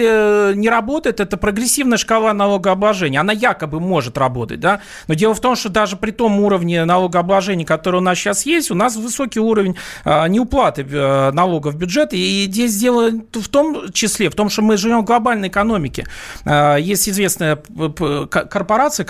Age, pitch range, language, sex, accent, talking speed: 40-59, 140-215 Hz, Russian, male, native, 160 wpm